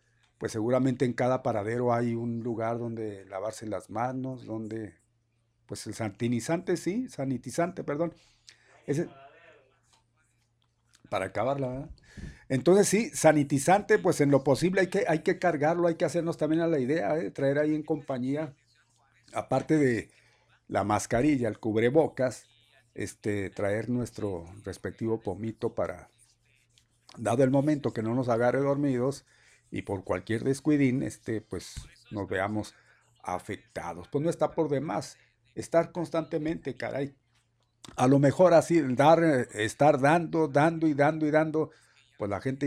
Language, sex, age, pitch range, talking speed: Spanish, male, 50-69, 110-140 Hz, 140 wpm